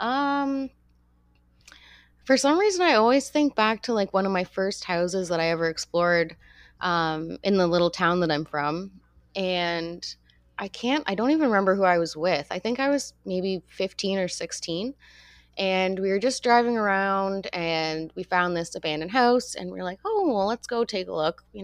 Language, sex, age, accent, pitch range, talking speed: English, female, 20-39, American, 160-200 Hz, 195 wpm